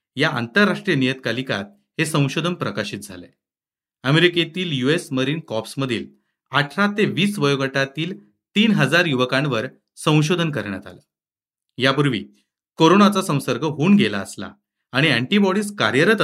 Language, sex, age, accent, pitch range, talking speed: Marathi, male, 40-59, native, 125-175 Hz, 80 wpm